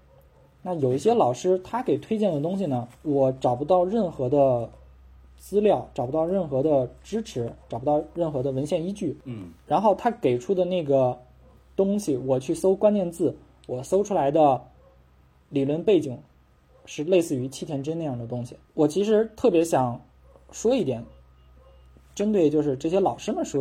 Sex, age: male, 20-39